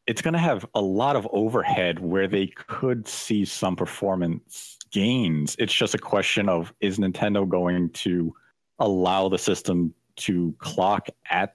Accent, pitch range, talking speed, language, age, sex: American, 90-110 Hz, 155 wpm, English, 40-59, male